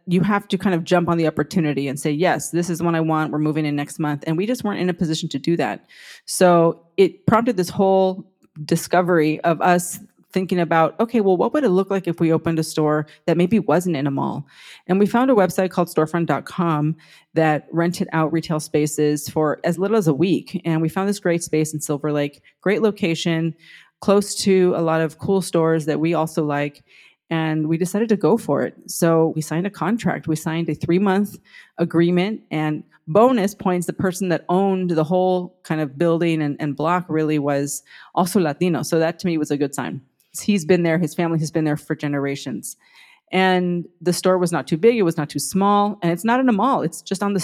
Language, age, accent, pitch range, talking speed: English, 30-49, American, 155-185 Hz, 225 wpm